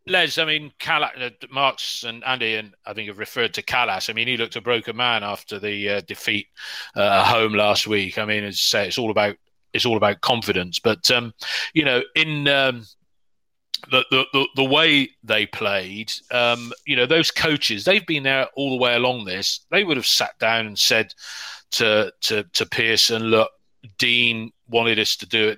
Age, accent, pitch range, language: 30-49, British, 110-135 Hz, English